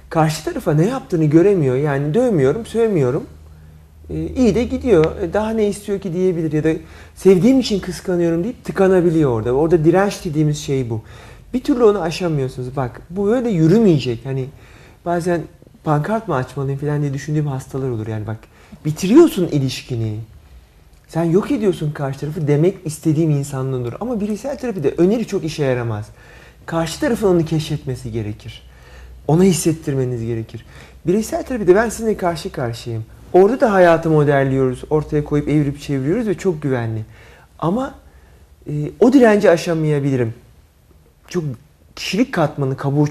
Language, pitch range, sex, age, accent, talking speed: Turkish, 120-185 Hz, male, 40-59, native, 140 wpm